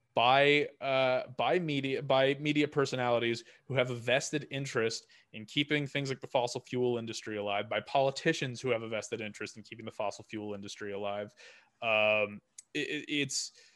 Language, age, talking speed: English, 20-39, 165 wpm